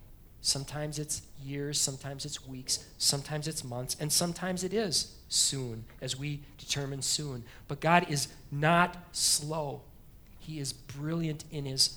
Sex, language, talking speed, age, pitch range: male, English, 140 wpm, 40-59, 140-185 Hz